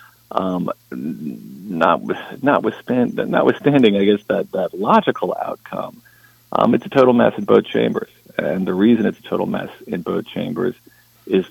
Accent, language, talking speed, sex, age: American, English, 160 wpm, male, 40-59